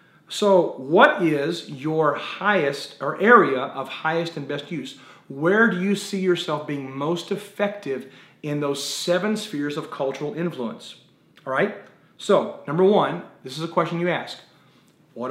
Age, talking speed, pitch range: 40-59, 155 wpm, 140-190 Hz